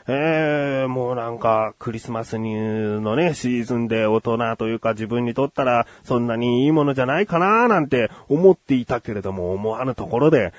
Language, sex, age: Japanese, male, 30-49